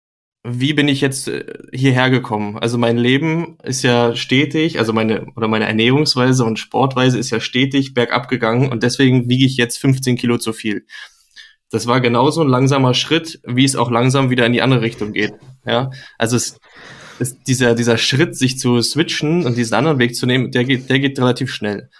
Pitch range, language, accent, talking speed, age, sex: 120-130 Hz, German, German, 195 wpm, 20-39, male